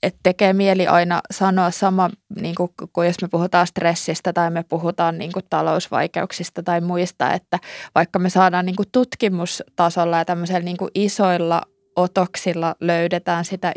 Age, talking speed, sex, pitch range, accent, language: 20-39, 140 wpm, female, 170-185 Hz, native, Finnish